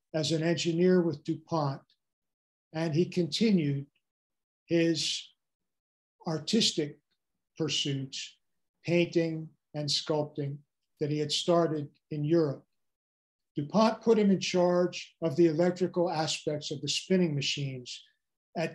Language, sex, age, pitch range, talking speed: English, male, 50-69, 145-175 Hz, 110 wpm